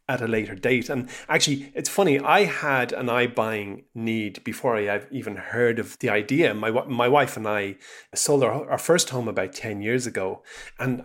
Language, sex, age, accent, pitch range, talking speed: English, male, 30-49, Irish, 110-140 Hz, 200 wpm